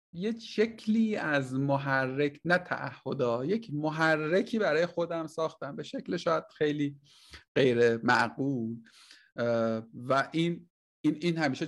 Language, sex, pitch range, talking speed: Persian, male, 125-160 Hz, 115 wpm